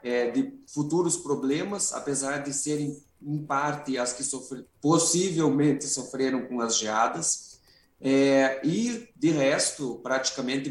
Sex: male